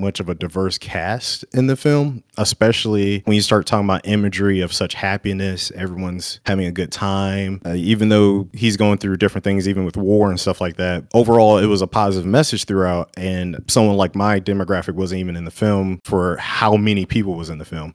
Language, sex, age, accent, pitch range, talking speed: English, male, 30-49, American, 95-110 Hz, 210 wpm